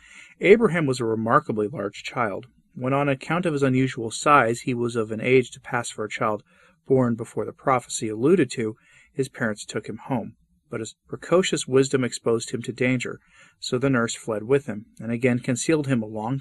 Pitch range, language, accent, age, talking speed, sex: 115-145 Hz, English, American, 40-59, 200 wpm, male